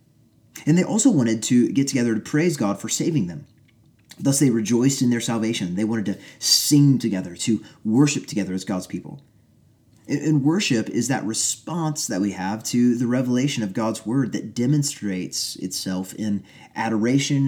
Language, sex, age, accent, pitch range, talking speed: English, male, 30-49, American, 105-135 Hz, 170 wpm